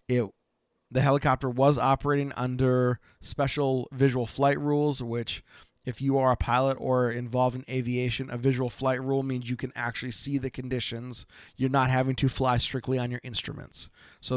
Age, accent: 30-49, American